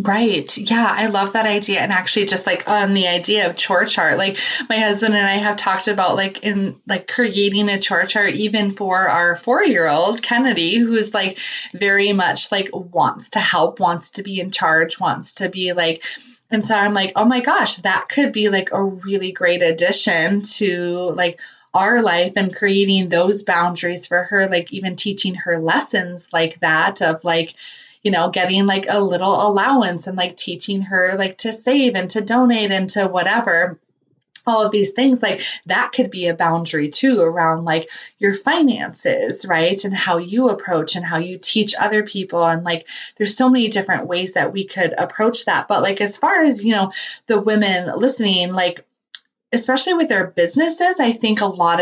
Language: English